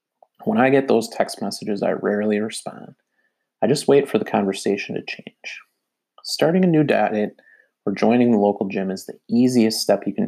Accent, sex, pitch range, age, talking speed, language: American, male, 100-135 Hz, 30-49, 185 wpm, English